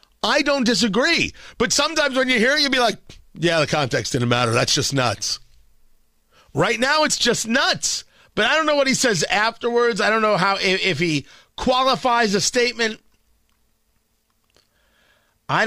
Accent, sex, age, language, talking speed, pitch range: American, male, 40-59, English, 170 wpm, 110-185 Hz